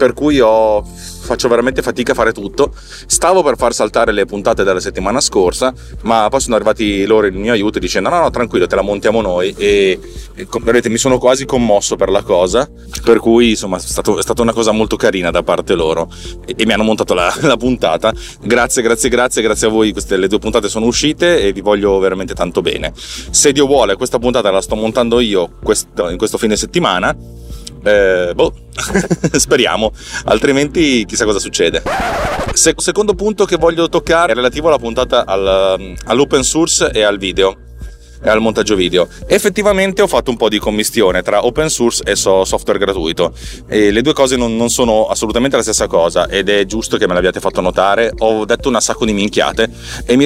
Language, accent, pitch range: Italian, native, 105-140 Hz